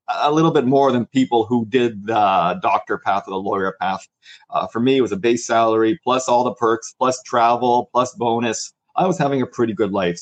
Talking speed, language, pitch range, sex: 225 wpm, English, 115-145 Hz, male